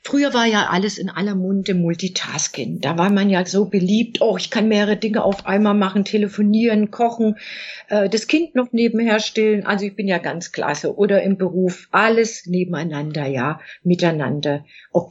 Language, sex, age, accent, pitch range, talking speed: German, female, 50-69, German, 175-230 Hz, 170 wpm